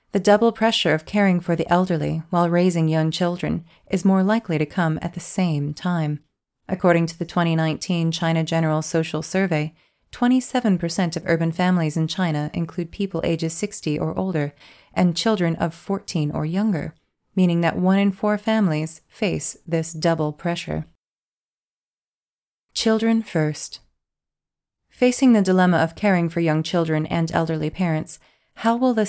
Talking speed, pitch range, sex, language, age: 150 wpm, 160-195 Hz, female, English, 30-49